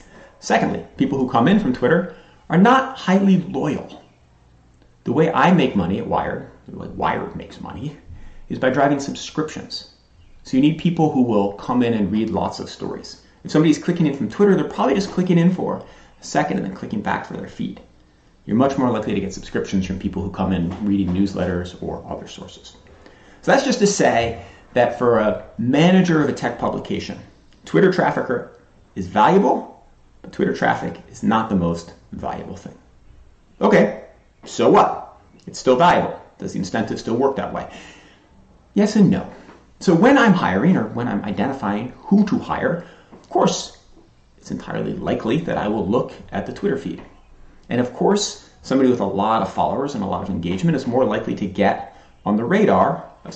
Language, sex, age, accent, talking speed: English, male, 30-49, American, 185 wpm